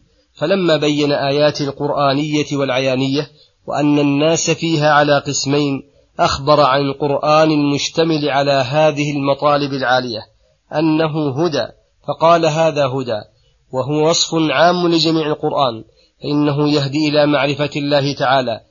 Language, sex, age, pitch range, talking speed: Arabic, male, 30-49, 135-150 Hz, 110 wpm